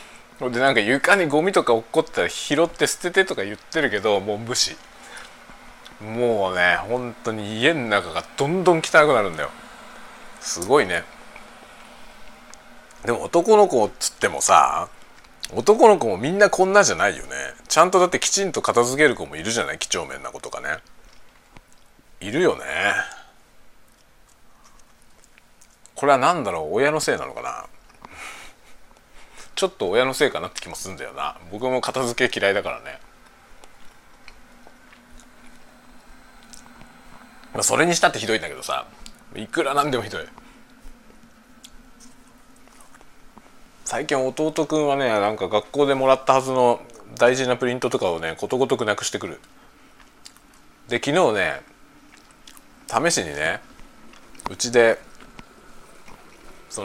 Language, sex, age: Japanese, male, 40-59